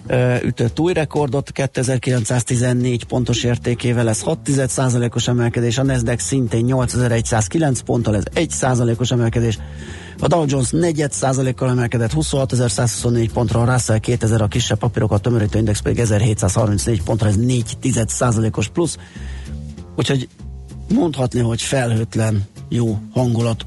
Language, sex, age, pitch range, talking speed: Hungarian, male, 30-49, 110-130 Hz, 115 wpm